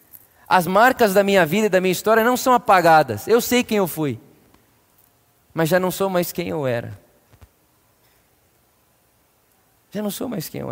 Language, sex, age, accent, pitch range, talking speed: Portuguese, male, 20-39, Brazilian, 180-220 Hz, 175 wpm